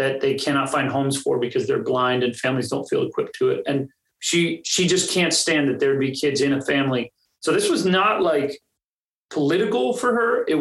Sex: male